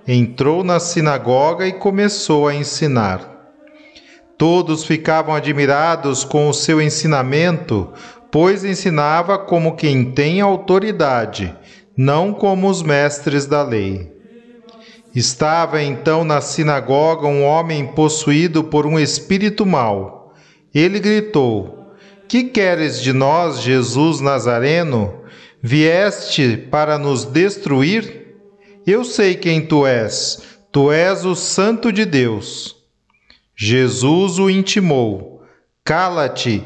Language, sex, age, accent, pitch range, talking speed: Portuguese, male, 40-59, Brazilian, 140-190 Hz, 105 wpm